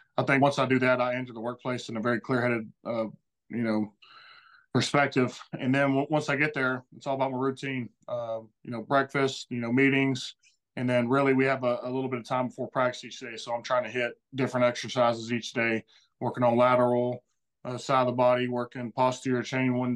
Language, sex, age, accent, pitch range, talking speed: English, male, 20-39, American, 120-130 Hz, 220 wpm